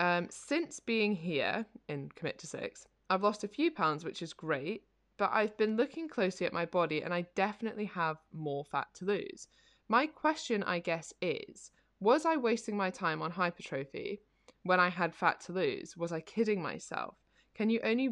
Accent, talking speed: British, 190 wpm